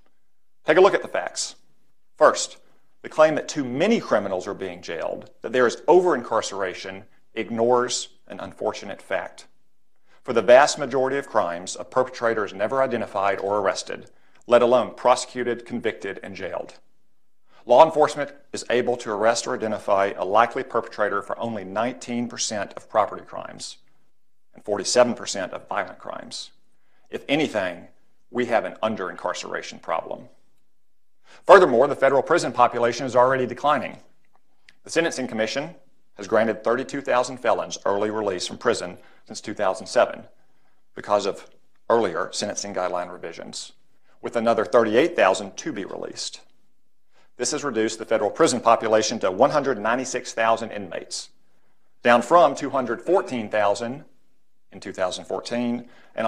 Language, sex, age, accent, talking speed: English, male, 40-59, American, 130 wpm